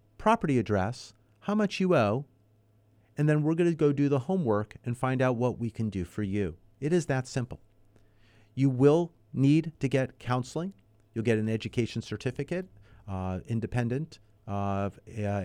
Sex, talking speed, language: male, 165 wpm, English